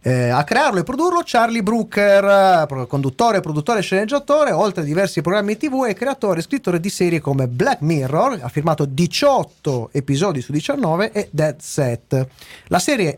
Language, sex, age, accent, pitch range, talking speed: Italian, male, 30-49, native, 135-200 Hz, 165 wpm